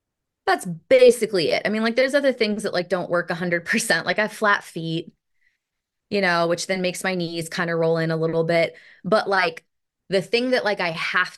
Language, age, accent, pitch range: English, 20-39, American, 170-220 Hz